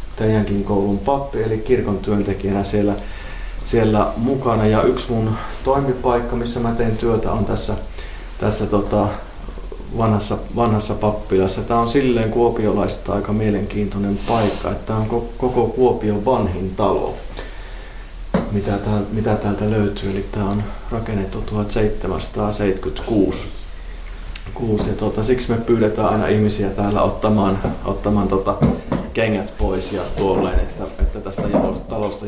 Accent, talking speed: native, 125 wpm